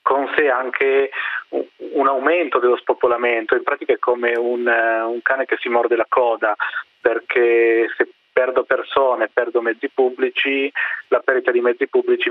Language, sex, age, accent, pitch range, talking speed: Italian, male, 30-49, native, 115-180 Hz, 155 wpm